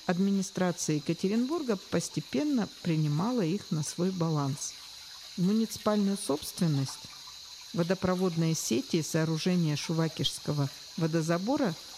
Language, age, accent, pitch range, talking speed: Russian, 50-69, native, 160-215 Hz, 80 wpm